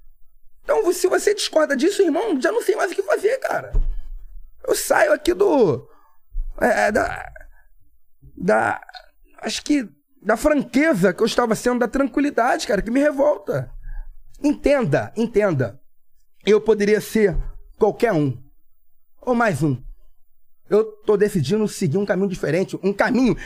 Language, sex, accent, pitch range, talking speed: Portuguese, male, Brazilian, 210-305 Hz, 140 wpm